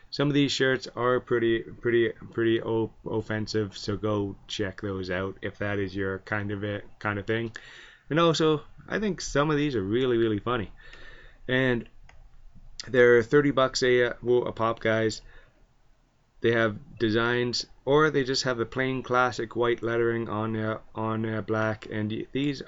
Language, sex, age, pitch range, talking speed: English, male, 20-39, 110-130 Hz, 165 wpm